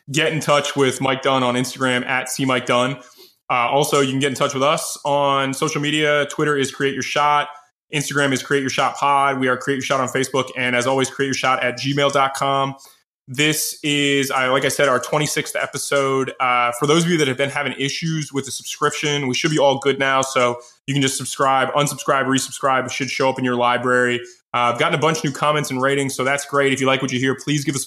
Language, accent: English, American